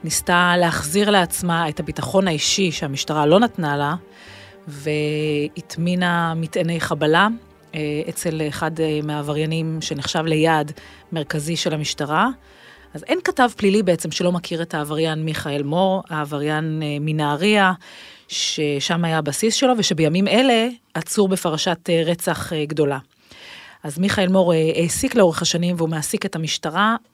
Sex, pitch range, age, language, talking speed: female, 155-200 Hz, 30-49, Hebrew, 120 wpm